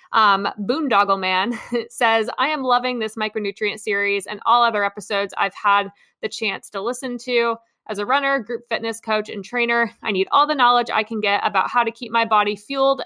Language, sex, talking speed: English, female, 200 wpm